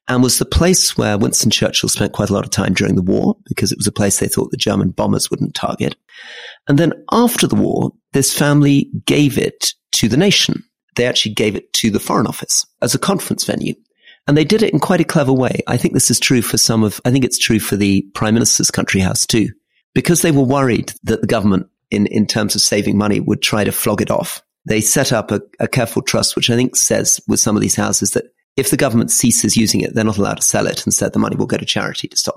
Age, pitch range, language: 40-59, 105-145 Hz, English